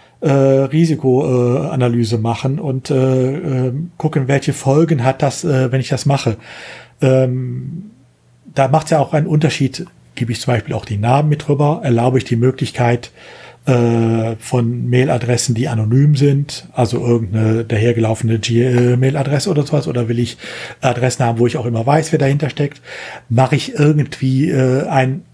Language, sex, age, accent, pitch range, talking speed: German, male, 40-59, German, 125-155 Hz, 160 wpm